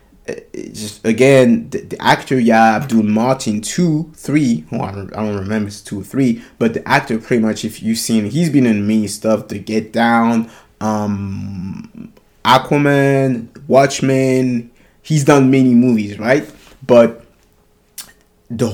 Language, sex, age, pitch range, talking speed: English, male, 20-39, 110-140 Hz, 145 wpm